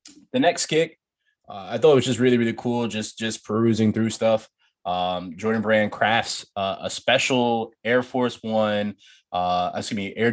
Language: Finnish